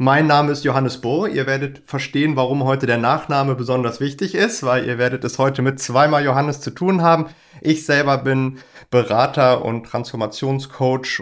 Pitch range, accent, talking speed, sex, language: 125-150 Hz, German, 170 wpm, male, German